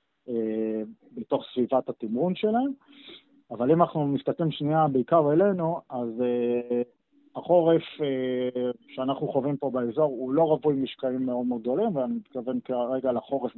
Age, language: 50-69, Hebrew